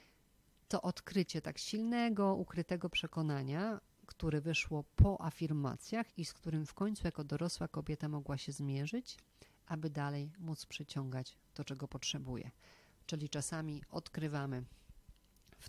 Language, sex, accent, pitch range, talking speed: Polish, female, native, 140-175 Hz, 120 wpm